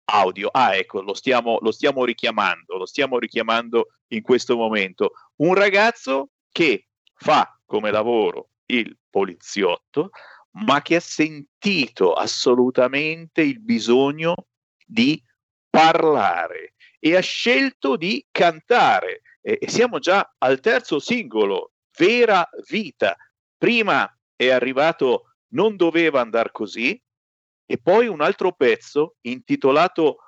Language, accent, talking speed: Italian, native, 115 wpm